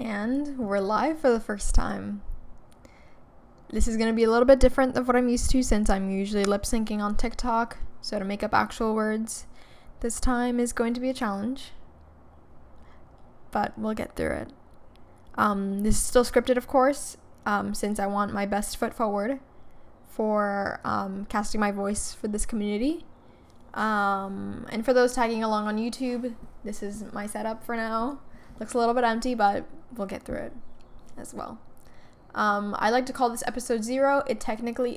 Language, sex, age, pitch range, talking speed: English, female, 10-29, 205-245 Hz, 180 wpm